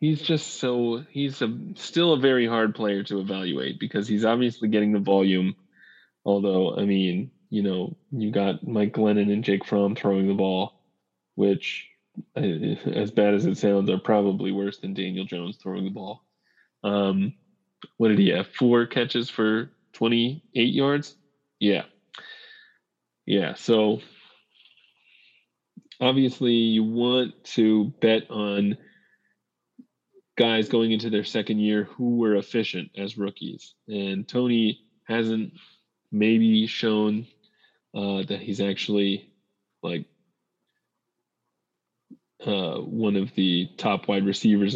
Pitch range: 100-120 Hz